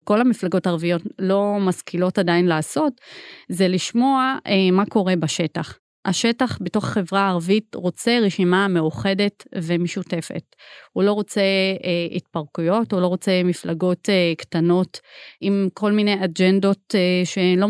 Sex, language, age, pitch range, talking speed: female, Hebrew, 30-49, 180-215 Hz, 130 wpm